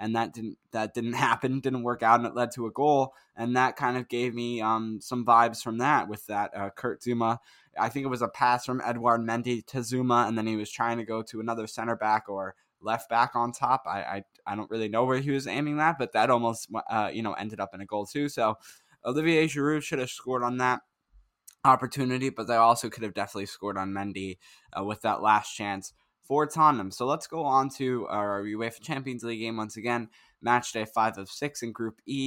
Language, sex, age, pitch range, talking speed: English, male, 10-29, 110-125 Hz, 235 wpm